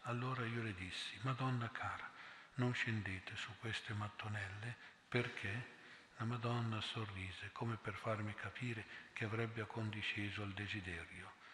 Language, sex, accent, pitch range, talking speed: Italian, male, native, 105-115 Hz, 125 wpm